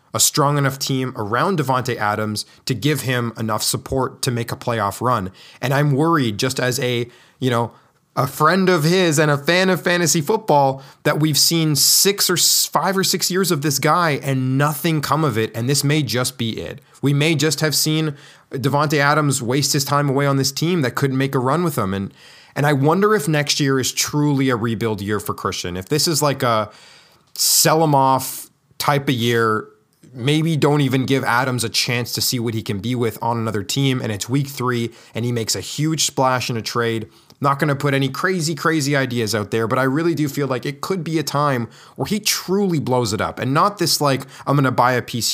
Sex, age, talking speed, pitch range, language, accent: male, 20-39, 225 wpm, 115-150 Hz, English, American